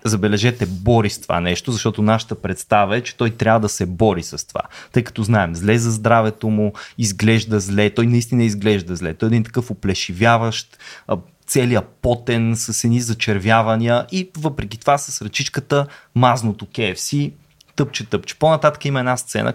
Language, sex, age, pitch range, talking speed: Bulgarian, male, 20-39, 100-120 Hz, 165 wpm